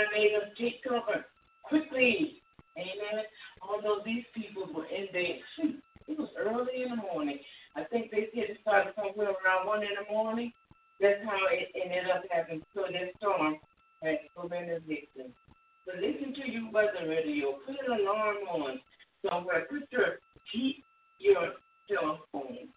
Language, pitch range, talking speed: English, 175-290 Hz, 165 wpm